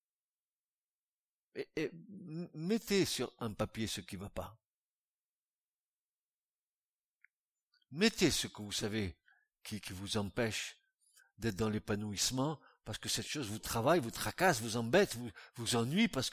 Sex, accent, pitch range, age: male, French, 110-175 Hz, 60-79